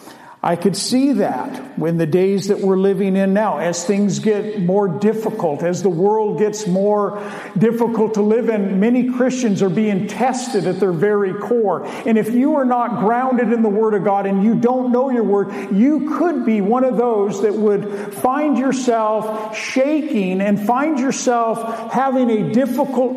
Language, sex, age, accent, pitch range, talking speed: English, male, 50-69, American, 195-235 Hz, 180 wpm